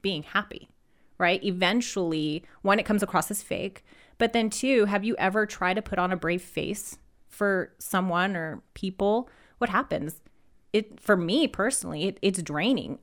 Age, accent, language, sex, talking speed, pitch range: 30-49, American, English, female, 165 wpm, 175-210 Hz